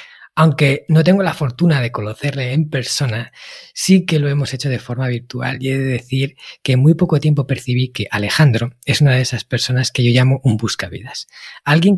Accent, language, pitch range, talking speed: Spanish, Spanish, 120-150 Hz, 200 wpm